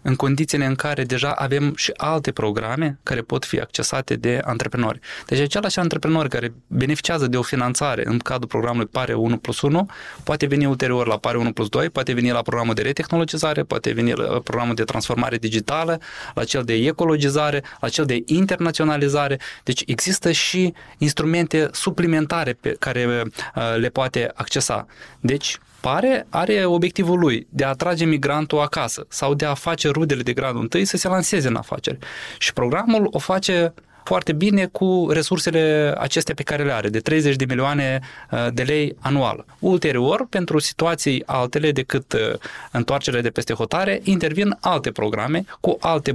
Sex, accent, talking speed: male, native, 165 wpm